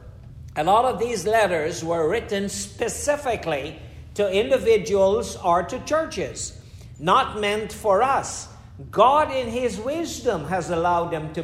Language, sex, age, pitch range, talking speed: English, male, 60-79, 170-230 Hz, 125 wpm